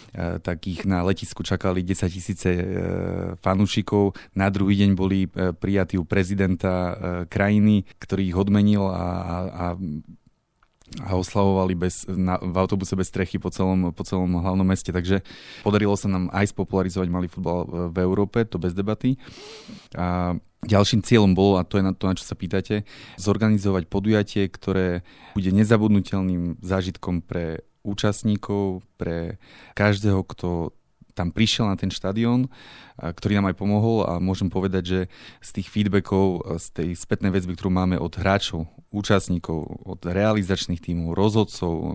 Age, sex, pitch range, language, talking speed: 20-39, male, 90-100 Hz, Slovak, 145 wpm